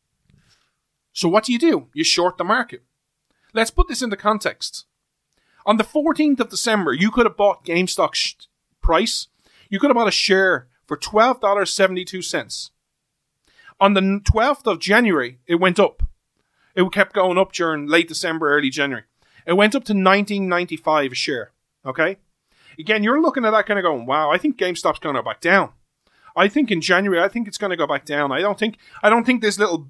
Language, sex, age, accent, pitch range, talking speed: English, male, 30-49, Irish, 160-215 Hz, 185 wpm